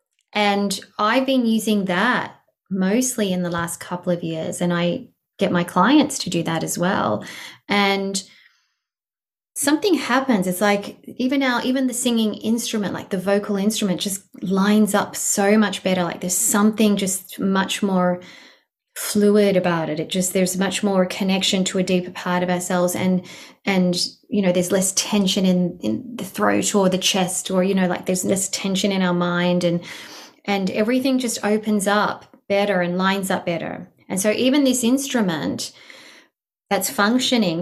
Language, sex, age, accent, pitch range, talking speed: English, female, 20-39, Australian, 180-220 Hz, 170 wpm